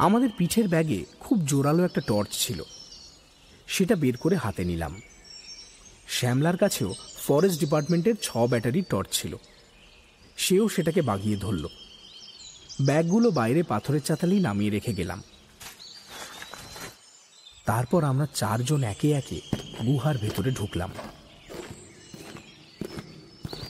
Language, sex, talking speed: English, male, 105 wpm